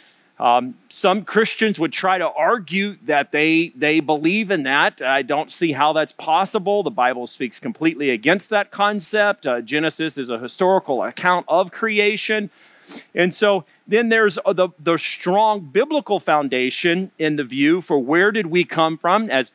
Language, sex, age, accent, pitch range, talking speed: English, male, 40-59, American, 155-200 Hz, 165 wpm